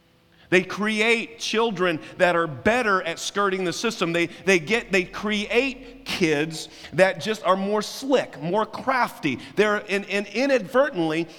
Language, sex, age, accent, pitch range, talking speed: English, male, 40-59, American, 160-215 Hz, 140 wpm